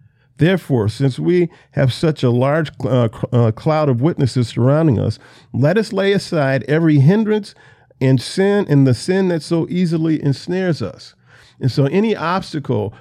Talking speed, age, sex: 155 wpm, 50-69, male